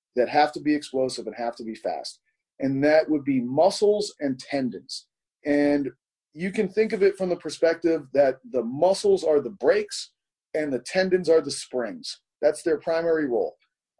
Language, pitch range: English, 140-185 Hz